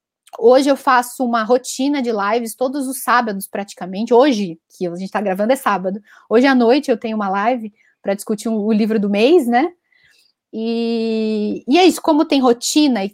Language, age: Portuguese, 20-39